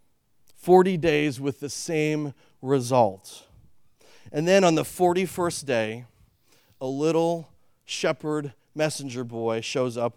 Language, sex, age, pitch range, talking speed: English, male, 40-59, 130-175 Hz, 110 wpm